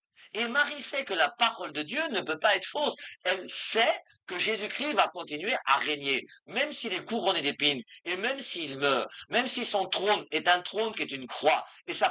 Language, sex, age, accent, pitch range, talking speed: French, male, 50-69, French, 145-220 Hz, 215 wpm